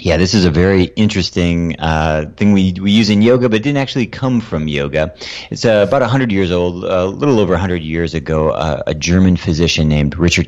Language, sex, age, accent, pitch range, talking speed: English, male, 30-49, American, 80-110 Hz, 220 wpm